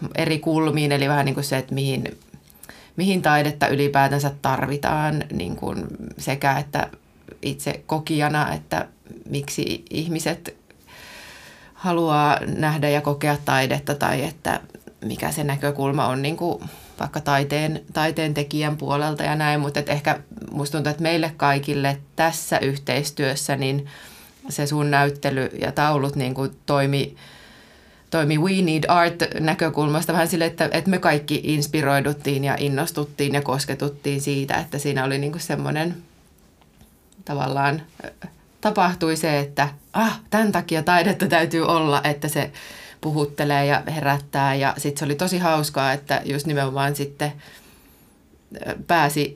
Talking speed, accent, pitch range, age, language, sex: 125 wpm, native, 140-155 Hz, 30-49, Finnish, female